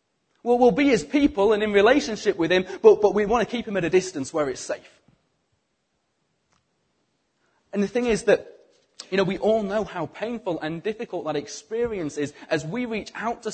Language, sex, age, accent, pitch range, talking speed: English, male, 30-49, British, 145-195 Hz, 200 wpm